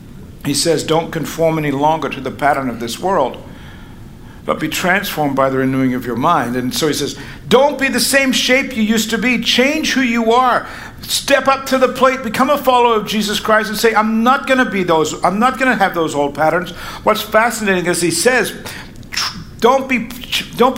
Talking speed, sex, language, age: 195 wpm, male, English, 60-79